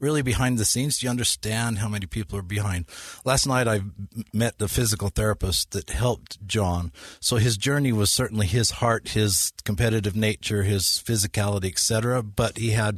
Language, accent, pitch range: English, American, 95-115 Hz